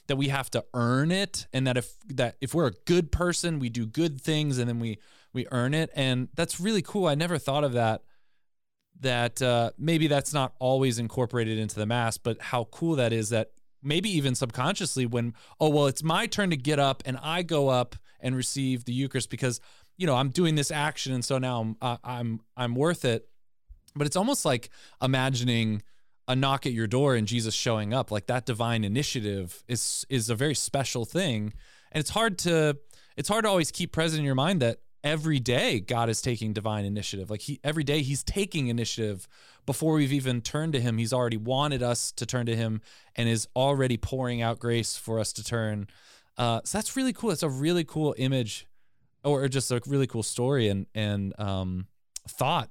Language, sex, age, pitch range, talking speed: English, male, 20-39, 115-145 Hz, 205 wpm